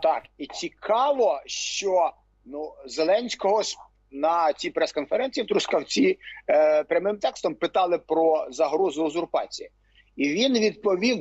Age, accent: 50-69, native